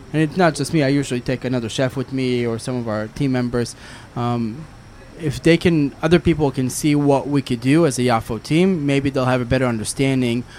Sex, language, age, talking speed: male, English, 20-39, 225 wpm